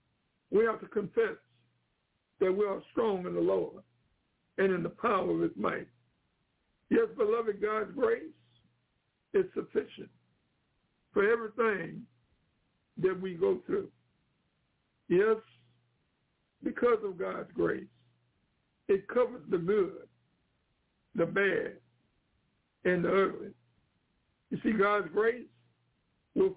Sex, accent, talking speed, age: male, American, 110 wpm, 60-79